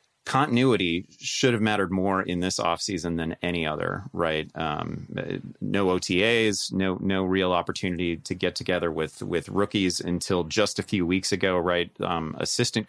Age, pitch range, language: 30-49, 85-110 Hz, English